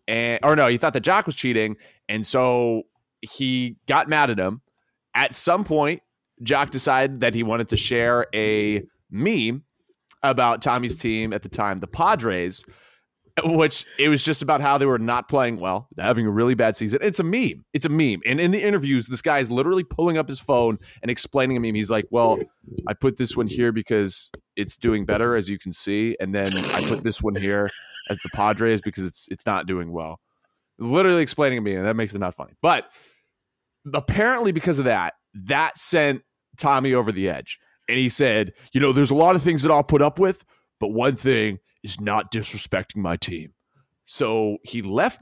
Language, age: English, 30-49